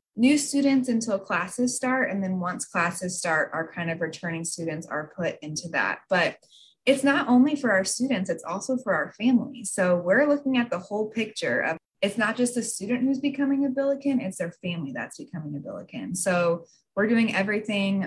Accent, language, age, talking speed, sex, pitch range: American, English, 20-39, 195 wpm, female, 165-210 Hz